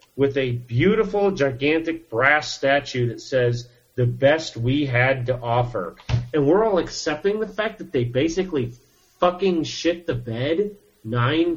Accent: American